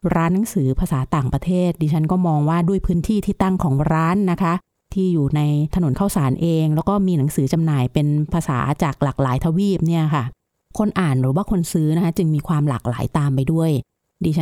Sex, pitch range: female, 145-180 Hz